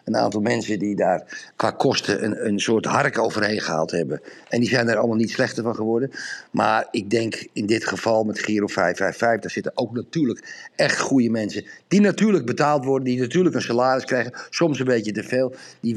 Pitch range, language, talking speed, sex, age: 120-155 Hz, Dutch, 205 wpm, male, 50-69